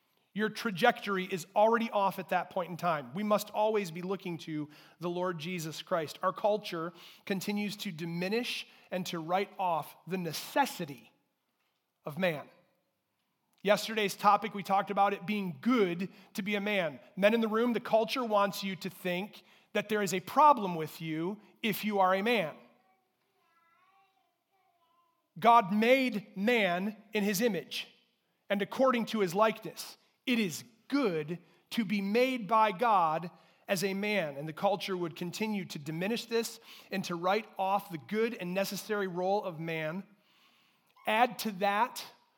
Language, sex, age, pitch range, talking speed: English, male, 30-49, 180-220 Hz, 155 wpm